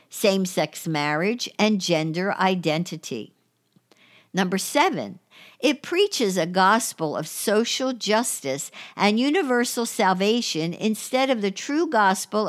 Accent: American